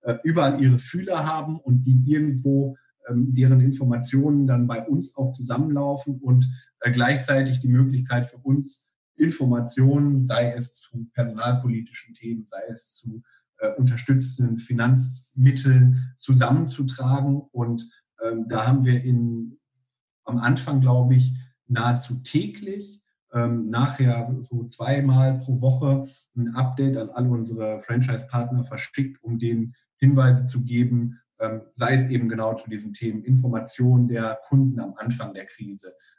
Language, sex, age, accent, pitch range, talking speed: German, male, 50-69, German, 115-130 Hz, 130 wpm